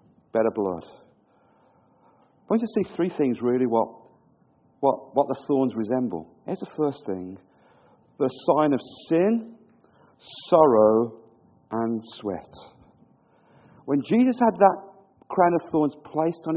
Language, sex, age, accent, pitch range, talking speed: English, male, 50-69, British, 135-200 Hz, 130 wpm